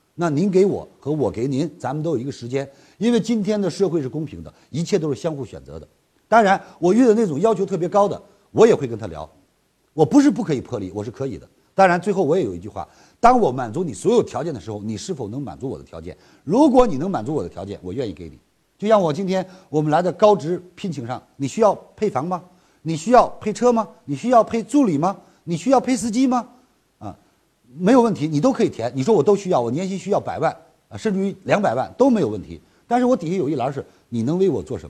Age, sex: 50-69, male